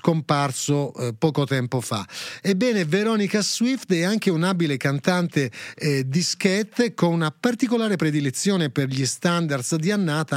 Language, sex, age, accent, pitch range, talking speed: Italian, male, 30-49, native, 140-180 Hz, 140 wpm